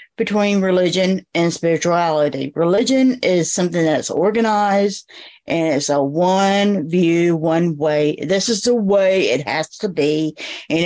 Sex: female